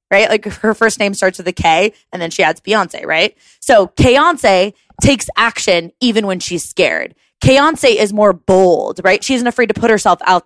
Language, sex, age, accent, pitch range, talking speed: English, female, 20-39, American, 205-270 Hz, 200 wpm